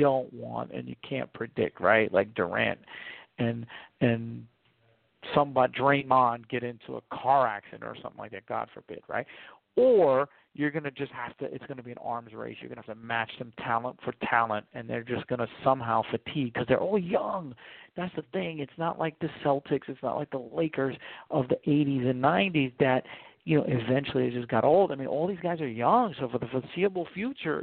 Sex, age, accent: male, 50-69, American